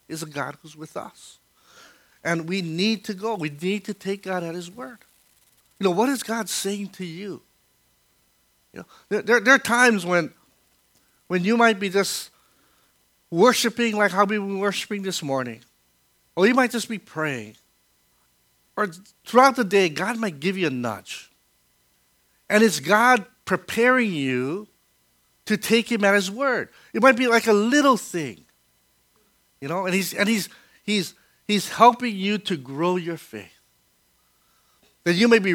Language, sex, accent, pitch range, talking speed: English, male, American, 140-210 Hz, 165 wpm